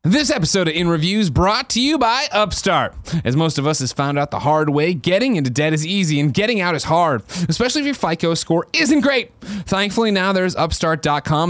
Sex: male